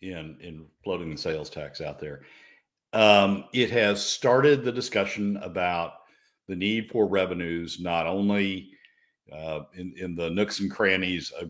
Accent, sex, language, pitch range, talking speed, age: American, male, English, 85-110 Hz, 150 wpm, 60-79